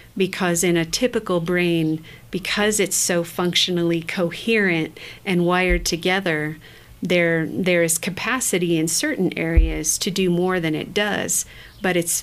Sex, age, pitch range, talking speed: female, 40-59, 165-185 Hz, 135 wpm